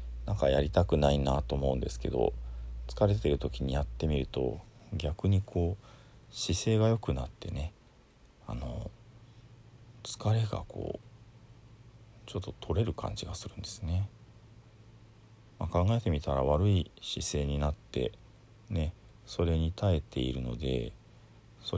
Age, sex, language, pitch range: 40-59, male, Japanese, 75-110 Hz